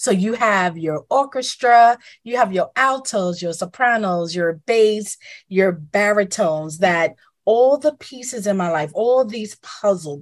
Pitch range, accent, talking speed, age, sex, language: 170-225 Hz, American, 145 wpm, 30-49, female, English